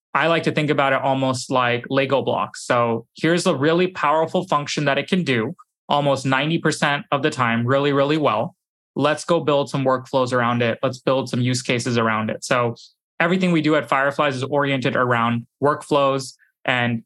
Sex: male